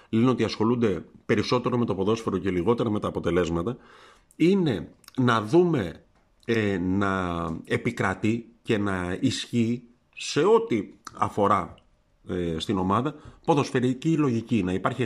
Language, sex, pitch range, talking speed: Greek, male, 105-130 Hz, 115 wpm